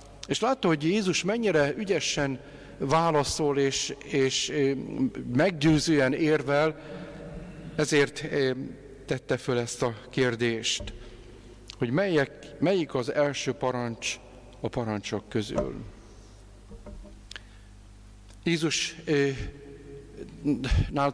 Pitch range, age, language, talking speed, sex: 125-155 Hz, 50-69, Hungarian, 75 wpm, male